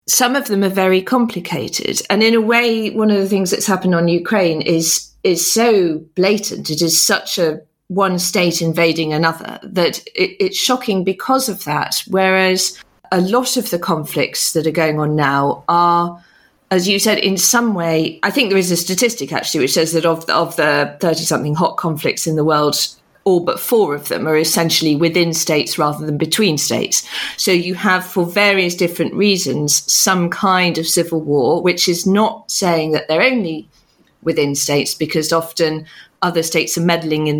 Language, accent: English, British